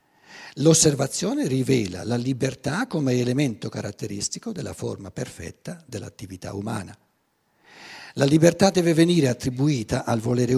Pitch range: 115-160 Hz